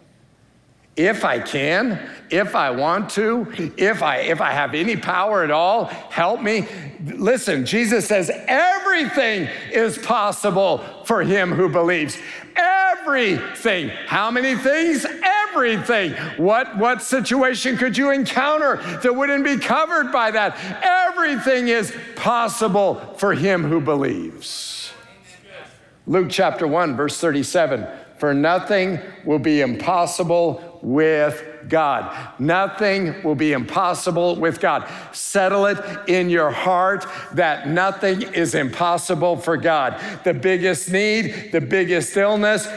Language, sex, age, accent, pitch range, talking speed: English, male, 50-69, American, 180-230 Hz, 120 wpm